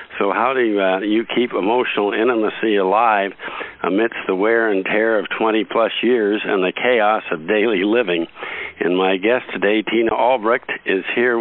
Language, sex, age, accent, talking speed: English, male, 60-79, American, 175 wpm